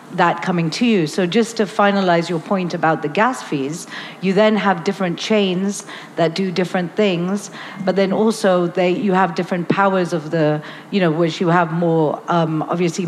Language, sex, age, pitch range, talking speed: English, female, 40-59, 170-195 Hz, 185 wpm